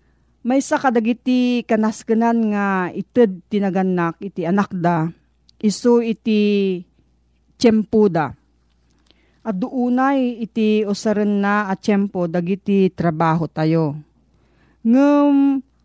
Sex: female